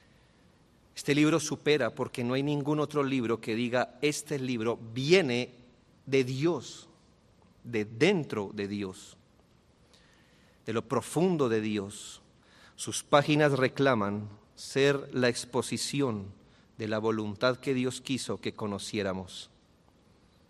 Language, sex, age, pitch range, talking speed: Spanish, male, 40-59, 110-135 Hz, 115 wpm